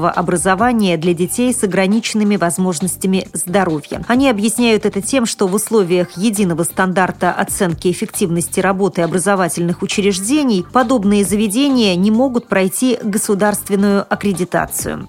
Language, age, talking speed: Russian, 30-49, 110 wpm